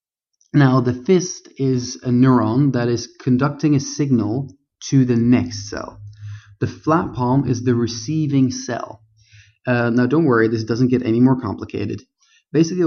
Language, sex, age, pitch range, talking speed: English, male, 30-49, 115-145 Hz, 155 wpm